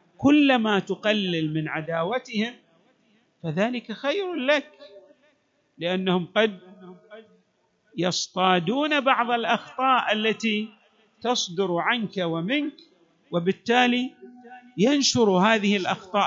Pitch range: 185-280 Hz